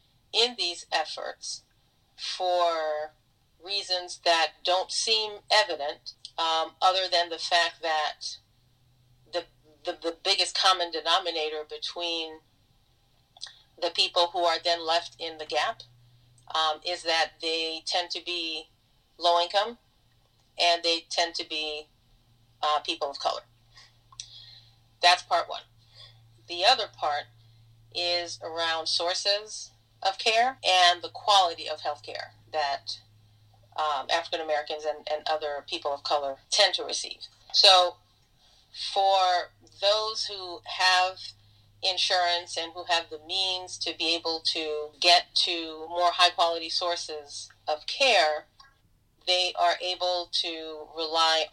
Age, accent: 40-59, American